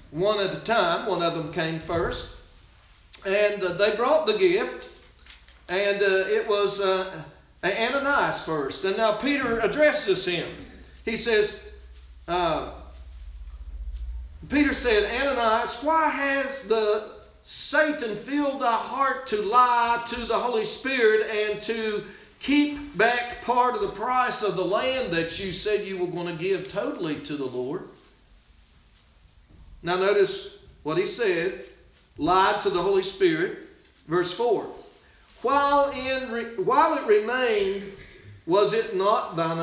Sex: male